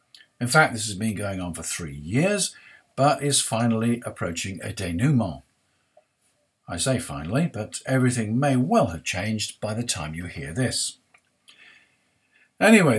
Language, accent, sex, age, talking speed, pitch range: English, British, male, 50-69, 150 wpm, 110-140 Hz